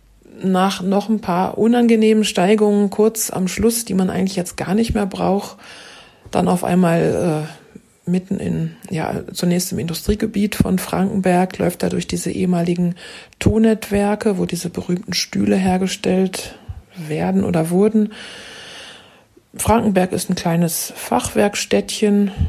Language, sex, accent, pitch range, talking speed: German, female, German, 180-210 Hz, 130 wpm